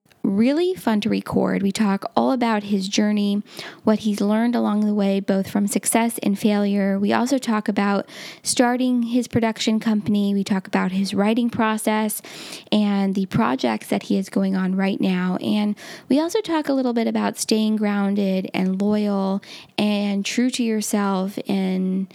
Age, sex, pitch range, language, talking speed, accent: 10-29, female, 200-235 Hz, English, 170 wpm, American